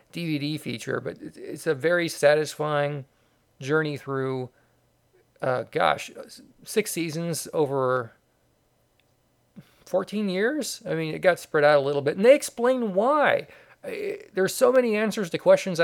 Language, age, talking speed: English, 40-59, 135 wpm